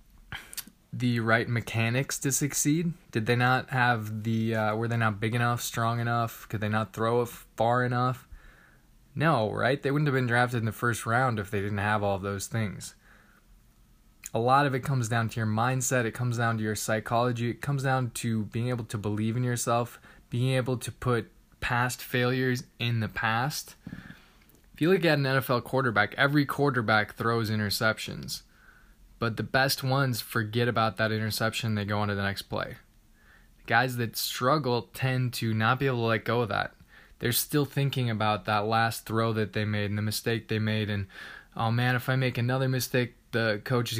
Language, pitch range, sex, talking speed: English, 110-130 Hz, male, 195 wpm